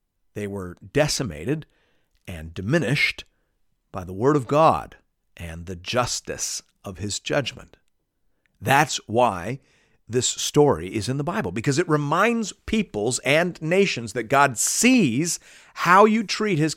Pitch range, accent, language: 100-155 Hz, American, English